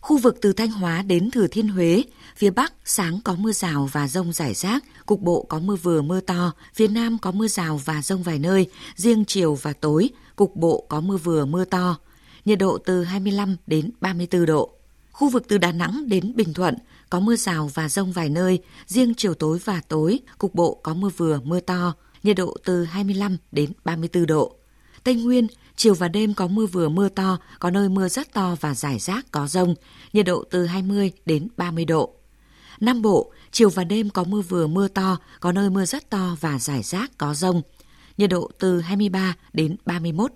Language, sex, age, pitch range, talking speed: Vietnamese, female, 20-39, 165-205 Hz, 210 wpm